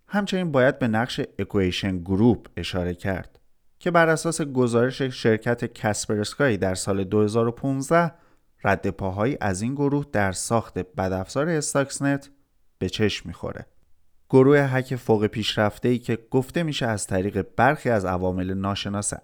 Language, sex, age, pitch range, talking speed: Persian, male, 30-49, 95-130 Hz, 130 wpm